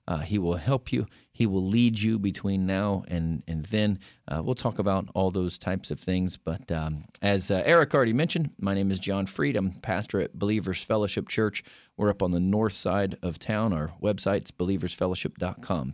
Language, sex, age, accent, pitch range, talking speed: English, male, 40-59, American, 95-130 Hz, 195 wpm